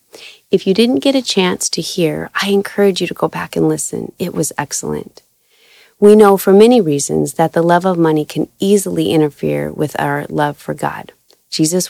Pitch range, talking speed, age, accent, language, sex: 150-185 Hz, 190 wpm, 30-49, American, English, female